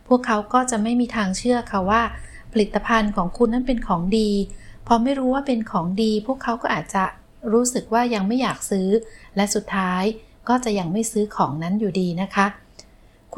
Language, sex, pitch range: Thai, female, 195-240 Hz